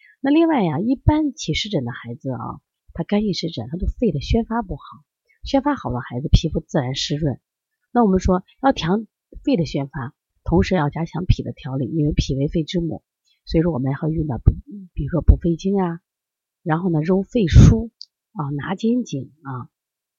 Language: Chinese